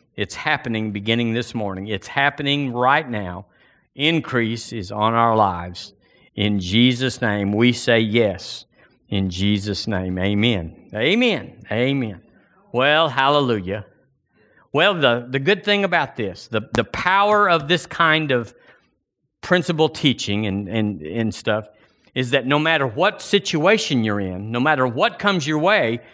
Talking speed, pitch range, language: 140 wpm, 115-185 Hz, English